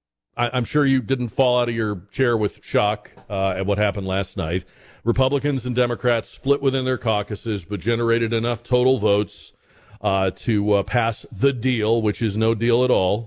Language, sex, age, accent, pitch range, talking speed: English, male, 40-59, American, 100-120 Hz, 185 wpm